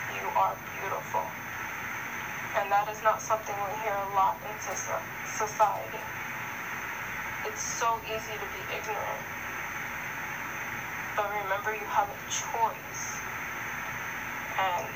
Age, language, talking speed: 10-29, English, 110 wpm